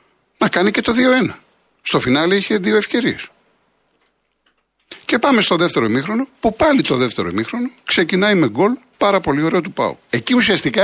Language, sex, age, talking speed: Greek, male, 50-69, 165 wpm